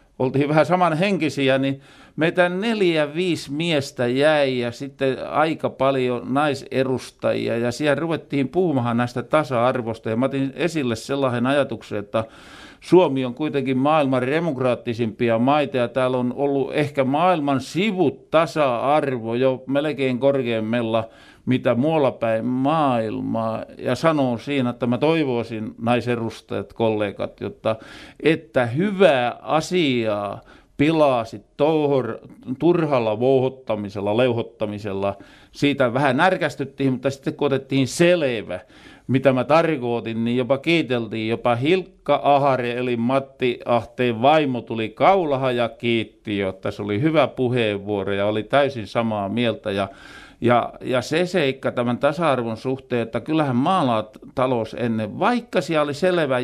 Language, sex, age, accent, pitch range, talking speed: Finnish, male, 50-69, native, 120-150 Hz, 120 wpm